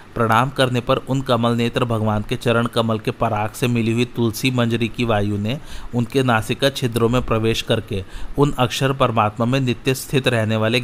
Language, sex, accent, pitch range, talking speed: Hindi, male, native, 110-125 Hz, 190 wpm